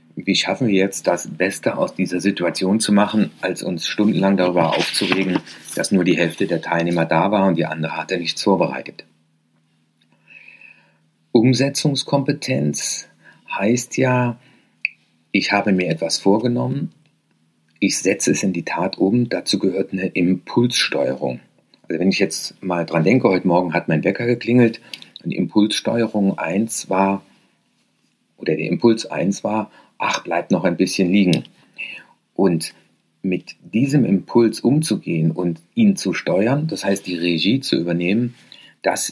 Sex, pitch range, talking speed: male, 85-120 Hz, 145 wpm